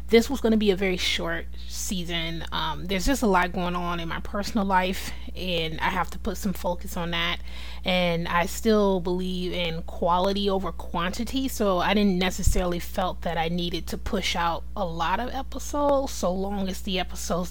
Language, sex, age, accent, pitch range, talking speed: English, female, 20-39, American, 175-205 Hz, 190 wpm